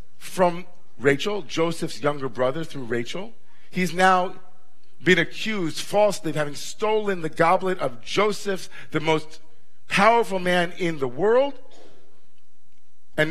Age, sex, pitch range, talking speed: 50-69, male, 125-175 Hz, 120 wpm